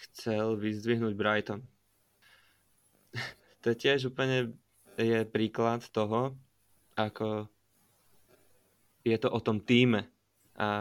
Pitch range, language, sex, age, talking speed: 105-115 Hz, Slovak, male, 20-39, 90 wpm